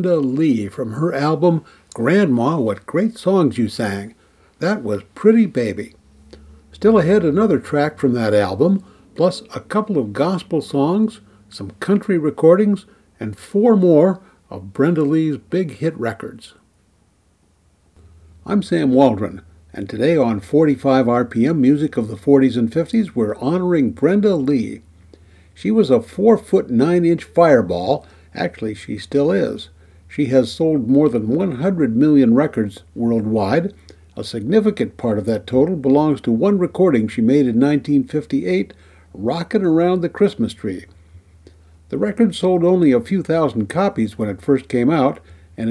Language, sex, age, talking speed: English, male, 60-79, 145 wpm